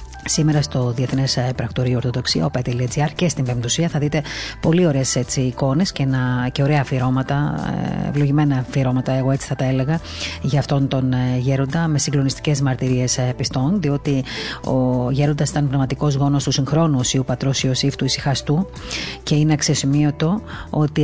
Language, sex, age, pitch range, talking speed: Greek, female, 30-49, 125-160 Hz, 145 wpm